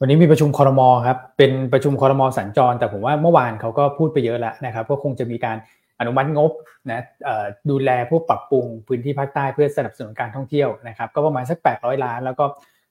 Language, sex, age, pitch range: Thai, male, 20-39, 120-145 Hz